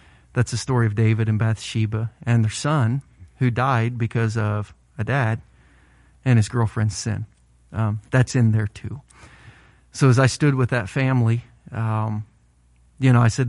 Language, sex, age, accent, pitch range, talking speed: English, male, 30-49, American, 110-125 Hz, 165 wpm